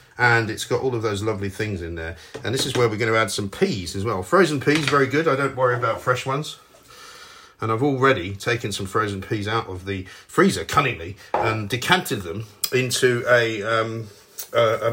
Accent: British